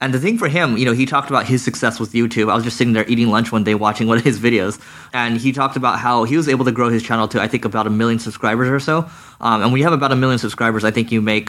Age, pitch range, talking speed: 20-39, 105-125 Hz, 325 wpm